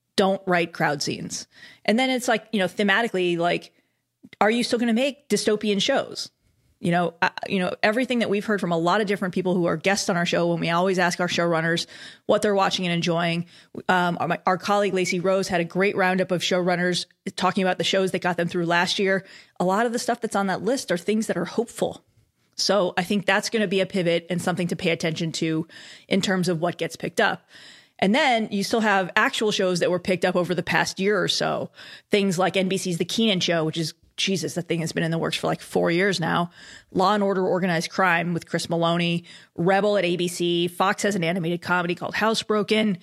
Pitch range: 175-205 Hz